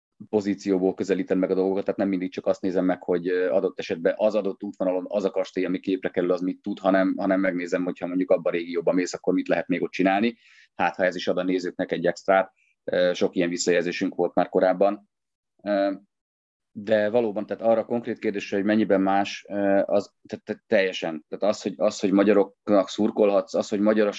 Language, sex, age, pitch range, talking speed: Hungarian, male, 30-49, 90-100 Hz, 200 wpm